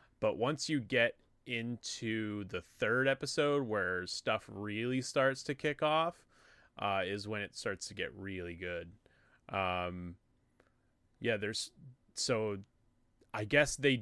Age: 20-39